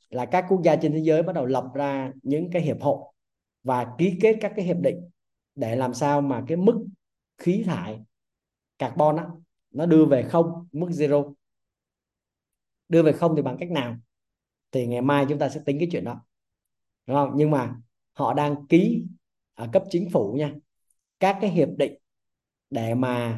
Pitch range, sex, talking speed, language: 130-170 Hz, male, 185 wpm, Vietnamese